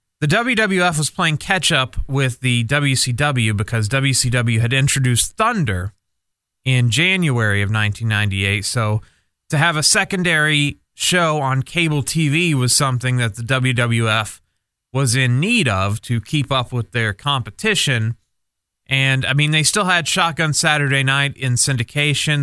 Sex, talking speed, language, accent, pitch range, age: male, 140 wpm, English, American, 115-155 Hz, 30-49